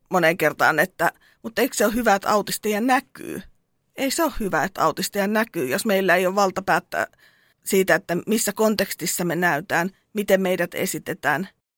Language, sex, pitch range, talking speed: Finnish, female, 170-210 Hz, 160 wpm